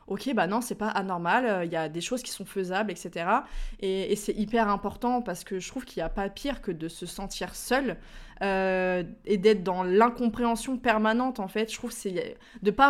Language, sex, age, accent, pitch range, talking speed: French, female, 20-39, French, 180-225 Hz, 225 wpm